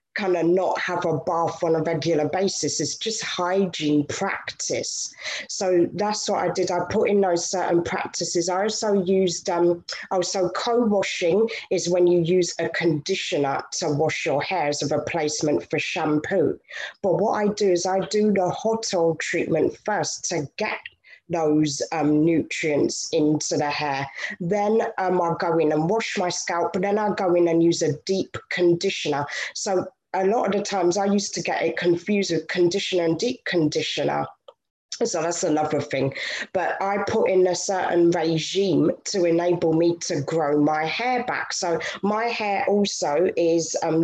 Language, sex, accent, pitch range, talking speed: English, female, British, 165-195 Hz, 175 wpm